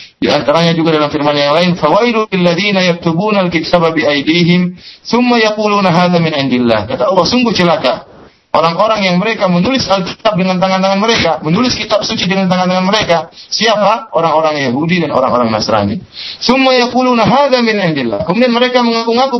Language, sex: Malay, male